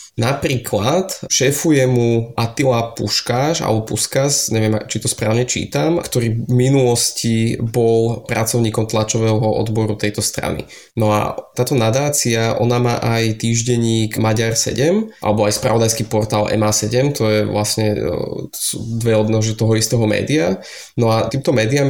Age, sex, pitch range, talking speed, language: 20-39, male, 110-120 Hz, 135 wpm, Slovak